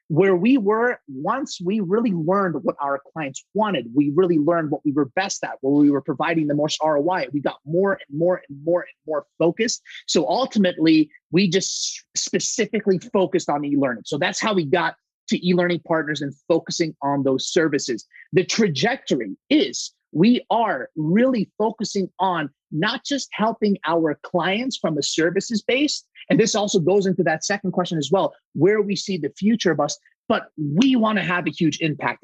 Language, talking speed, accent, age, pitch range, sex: English, 185 wpm, American, 30-49, 160-215 Hz, male